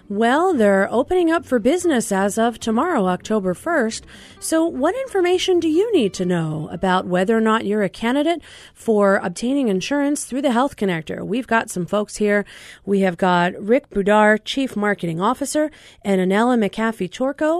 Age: 40-59